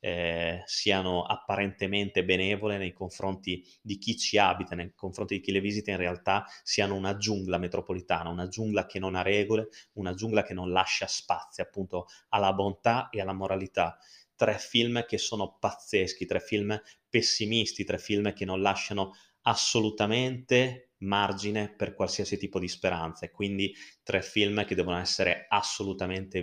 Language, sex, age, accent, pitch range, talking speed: Italian, male, 20-39, native, 90-105 Hz, 155 wpm